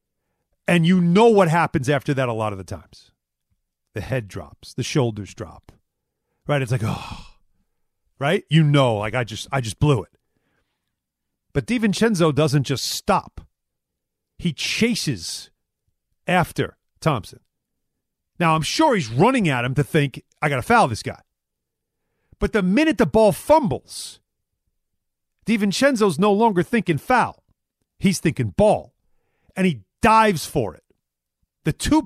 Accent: American